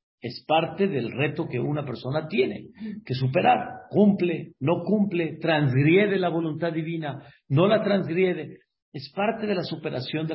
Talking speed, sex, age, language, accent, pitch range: 150 wpm, male, 50-69, Spanish, Mexican, 125-170 Hz